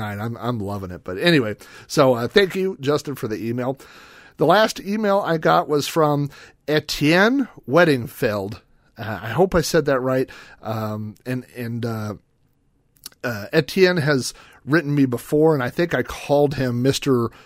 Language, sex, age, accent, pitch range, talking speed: English, male, 40-59, American, 115-160 Hz, 160 wpm